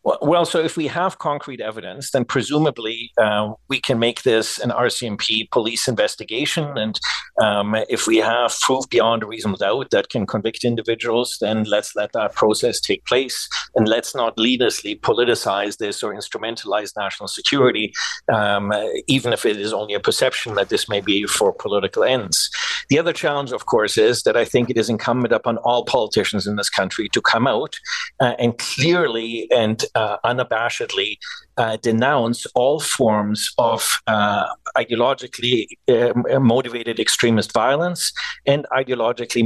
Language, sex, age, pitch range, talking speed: English, male, 50-69, 110-135 Hz, 160 wpm